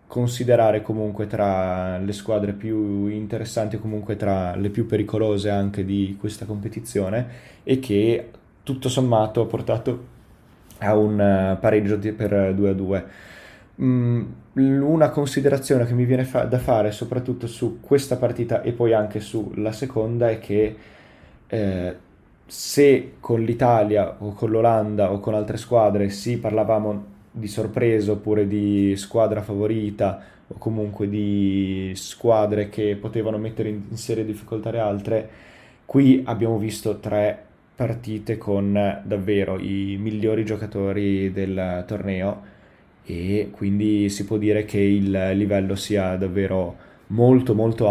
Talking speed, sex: 135 wpm, male